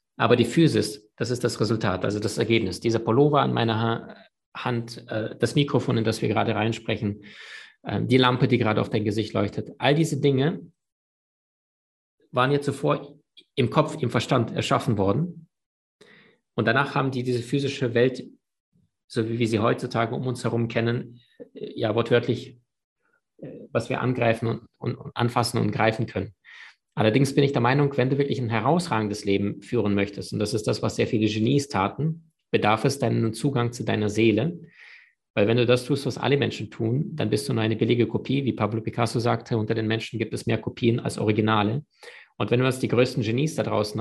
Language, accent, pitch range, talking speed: German, German, 110-130 Hz, 190 wpm